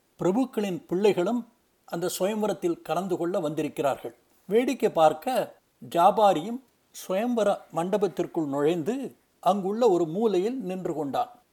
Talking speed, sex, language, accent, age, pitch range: 95 wpm, male, Tamil, native, 60-79, 165-215 Hz